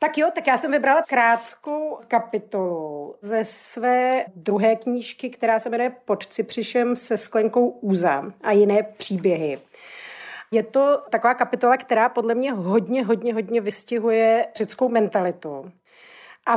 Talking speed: 135 wpm